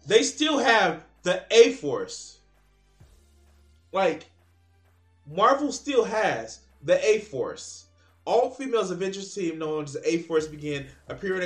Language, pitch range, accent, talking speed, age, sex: English, 130-190 Hz, American, 105 wpm, 20-39, male